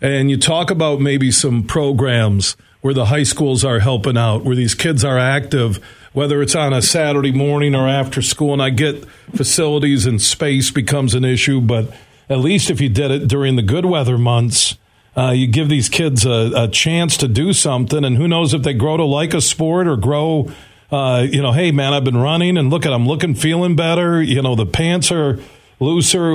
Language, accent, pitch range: English, American, 120-155 Hz